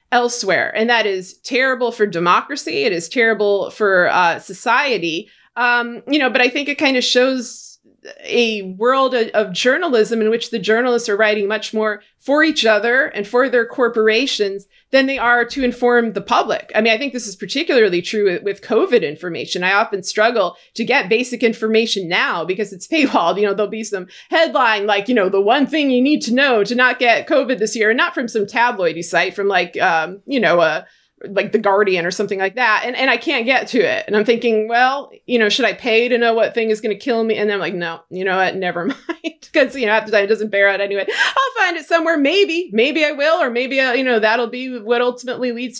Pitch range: 210-270 Hz